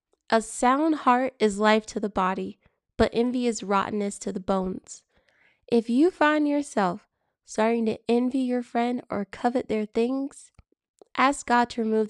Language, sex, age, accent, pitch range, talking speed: English, female, 20-39, American, 205-250 Hz, 160 wpm